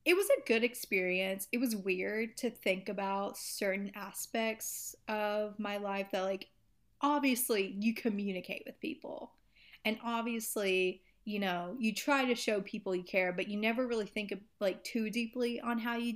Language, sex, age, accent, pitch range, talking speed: English, female, 30-49, American, 200-255 Hz, 165 wpm